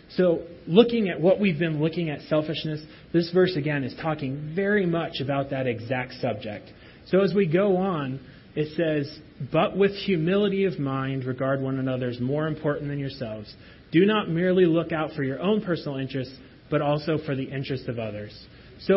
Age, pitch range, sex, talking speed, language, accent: 30-49, 135-175 Hz, male, 185 wpm, English, American